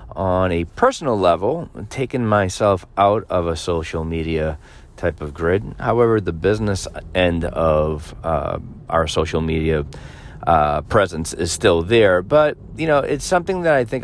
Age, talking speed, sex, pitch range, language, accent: 40-59, 155 wpm, male, 85-115 Hz, English, American